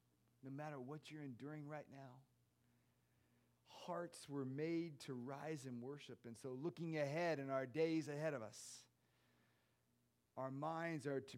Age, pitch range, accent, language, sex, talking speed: 40-59, 100-155 Hz, American, English, male, 150 wpm